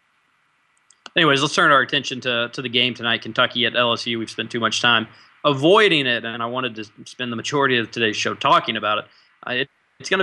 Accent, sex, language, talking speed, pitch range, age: American, male, English, 215 wpm, 125-150 Hz, 20-39